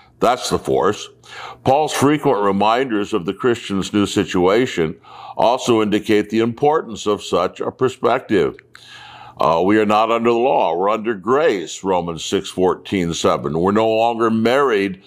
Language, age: English, 60-79